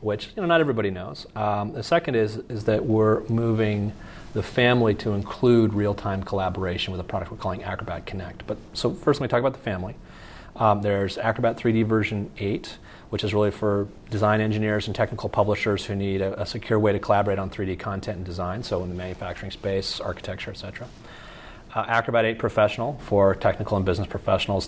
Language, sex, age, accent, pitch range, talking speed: English, male, 30-49, American, 95-110 Hz, 195 wpm